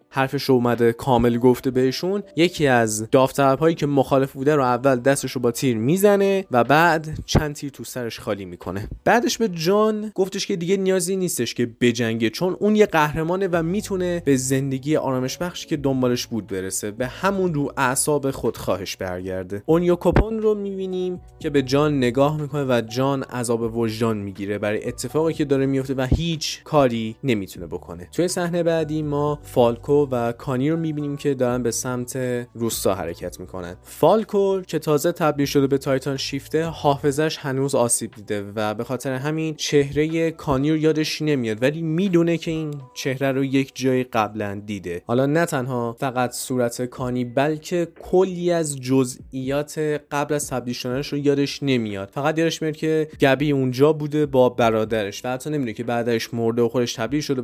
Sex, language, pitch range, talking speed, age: male, Persian, 120-155 Hz, 170 wpm, 20-39